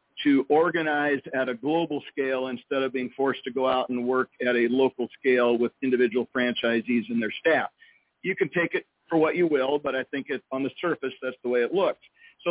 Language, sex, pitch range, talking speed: English, male, 130-165 Hz, 215 wpm